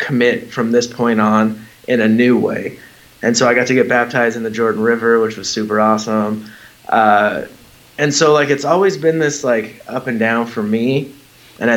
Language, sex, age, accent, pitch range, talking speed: English, male, 20-39, American, 110-125 Hz, 200 wpm